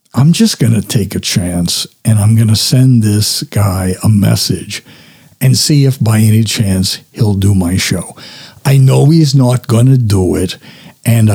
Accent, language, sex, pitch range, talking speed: American, English, male, 105-135 Hz, 170 wpm